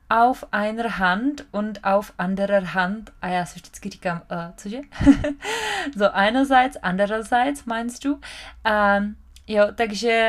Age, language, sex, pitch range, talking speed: 20-39, Czech, female, 185-225 Hz, 130 wpm